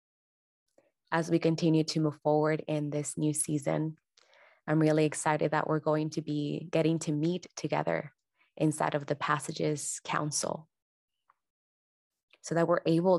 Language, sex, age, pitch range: English, female, 20-39, 150-165 Hz